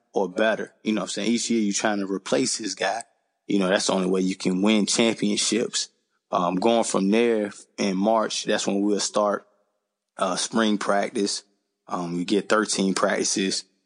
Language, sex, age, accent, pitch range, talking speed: English, male, 20-39, American, 100-110 Hz, 185 wpm